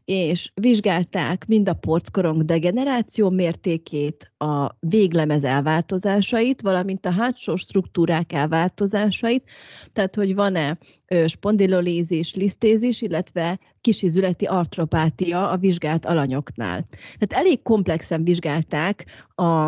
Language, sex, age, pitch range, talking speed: Hungarian, female, 30-49, 160-205 Hz, 90 wpm